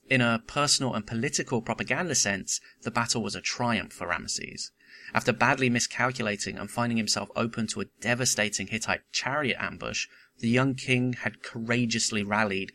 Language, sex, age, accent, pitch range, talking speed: English, male, 30-49, British, 105-125 Hz, 155 wpm